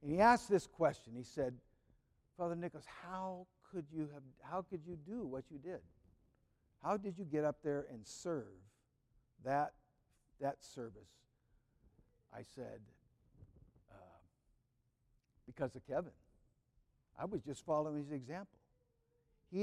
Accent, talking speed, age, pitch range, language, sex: American, 135 wpm, 60-79, 140-210 Hz, English, male